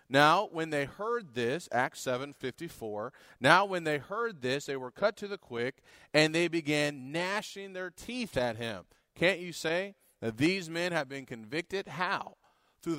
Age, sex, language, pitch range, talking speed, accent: 30-49, male, English, 125-170 Hz, 180 wpm, American